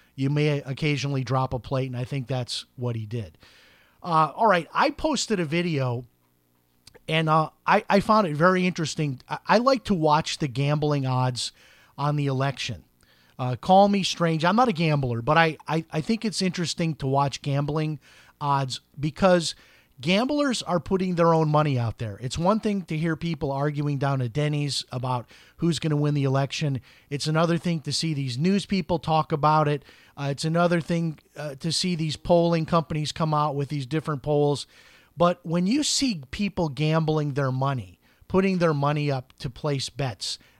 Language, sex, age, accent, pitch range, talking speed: English, male, 40-59, American, 140-175 Hz, 185 wpm